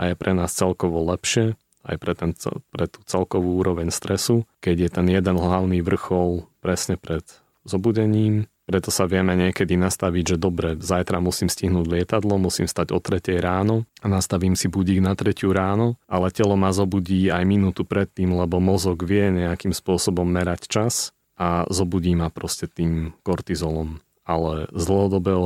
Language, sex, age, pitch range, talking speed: Slovak, male, 30-49, 85-100 Hz, 165 wpm